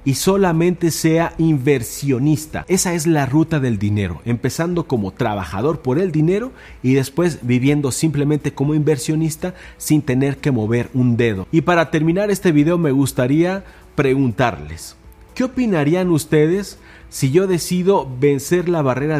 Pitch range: 125-165 Hz